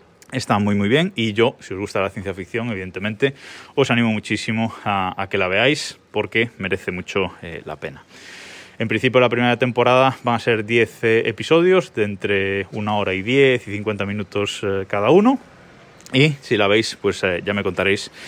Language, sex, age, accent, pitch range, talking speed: Spanish, male, 20-39, Spanish, 100-125 Hz, 195 wpm